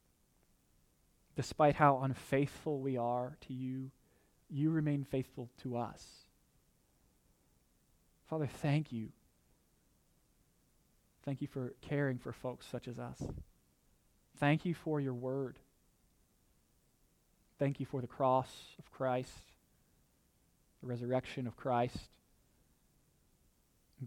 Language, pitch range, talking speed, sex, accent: English, 120-145 Hz, 100 wpm, male, American